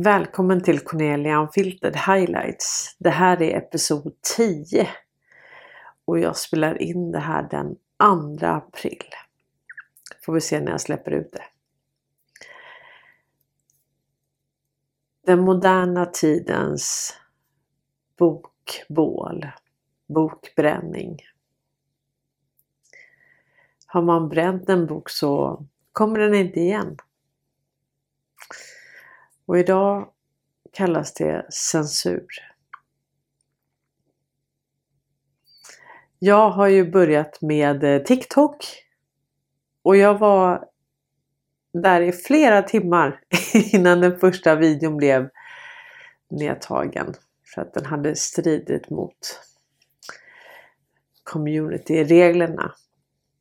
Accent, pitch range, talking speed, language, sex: native, 140-190 Hz, 80 wpm, Swedish, female